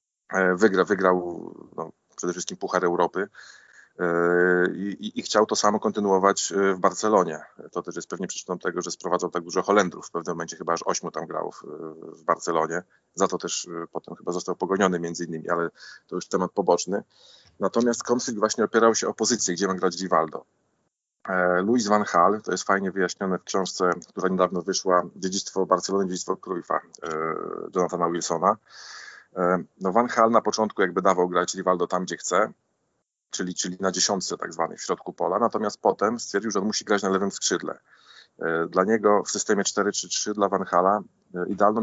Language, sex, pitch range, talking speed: Polish, male, 90-100 Hz, 180 wpm